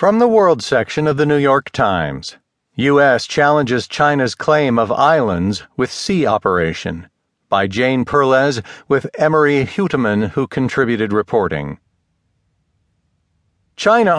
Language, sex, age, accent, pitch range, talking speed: English, male, 50-69, American, 100-140 Hz, 120 wpm